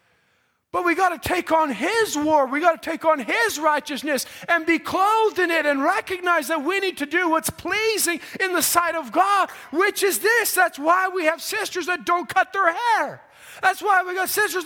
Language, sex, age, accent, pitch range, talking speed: English, male, 20-39, American, 260-375 Hz, 215 wpm